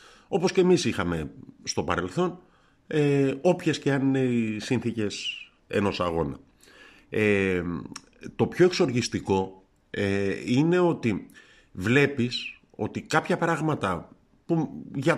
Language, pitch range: Greek, 100-140 Hz